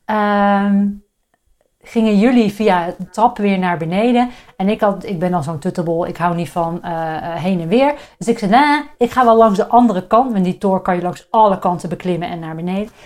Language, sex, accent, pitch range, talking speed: Dutch, female, Dutch, 175-225 Hz, 220 wpm